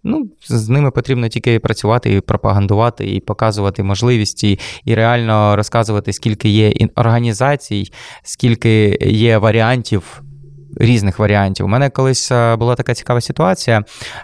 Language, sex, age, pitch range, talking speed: Ukrainian, male, 20-39, 105-130 Hz, 120 wpm